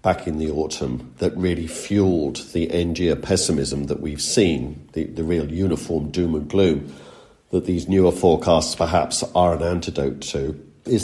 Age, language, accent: 50-69, English, British